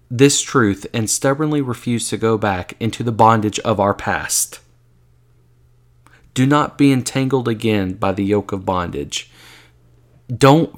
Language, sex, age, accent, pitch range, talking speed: English, male, 30-49, American, 100-130 Hz, 140 wpm